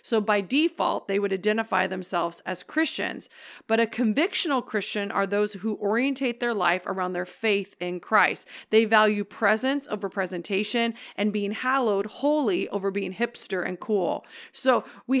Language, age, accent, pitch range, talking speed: English, 40-59, American, 210-270 Hz, 160 wpm